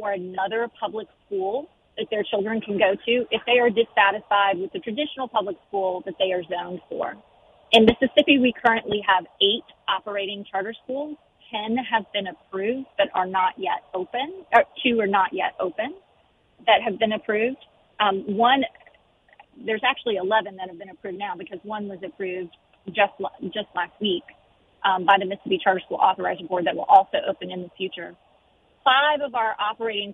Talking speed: 175 wpm